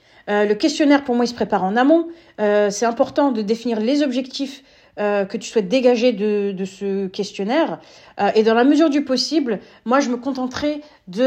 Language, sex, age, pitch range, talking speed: French, female, 40-59, 215-275 Hz, 200 wpm